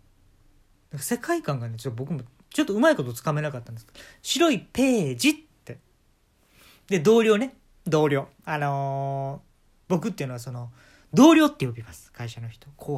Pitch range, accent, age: 125-205 Hz, native, 40-59